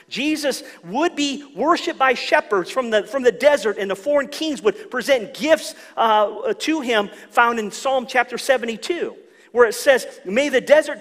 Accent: American